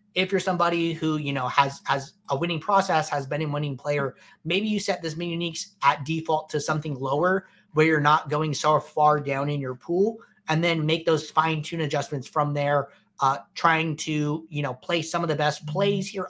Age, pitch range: 30-49, 150-180 Hz